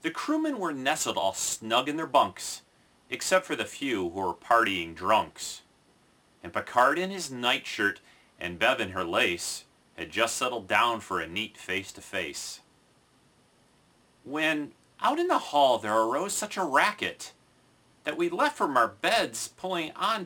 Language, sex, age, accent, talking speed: English, male, 40-59, American, 155 wpm